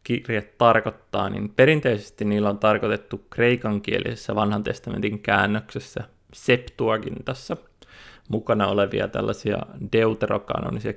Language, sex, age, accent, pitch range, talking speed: Finnish, male, 20-39, native, 100-115 Hz, 95 wpm